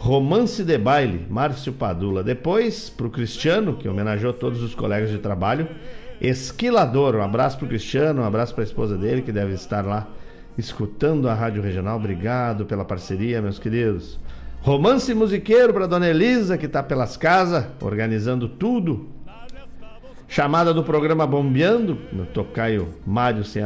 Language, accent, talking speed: Portuguese, Brazilian, 150 wpm